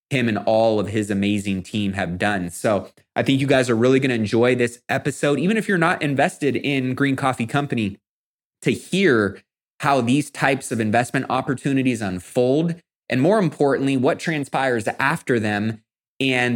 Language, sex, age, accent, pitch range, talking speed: English, male, 20-39, American, 105-135 Hz, 165 wpm